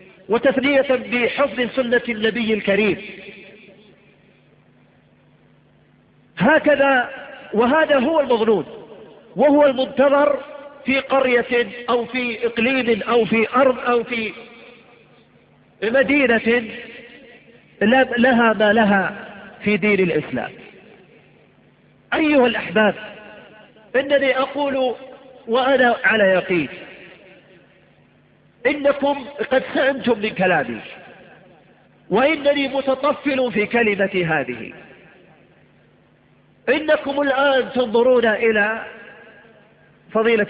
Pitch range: 210-265 Hz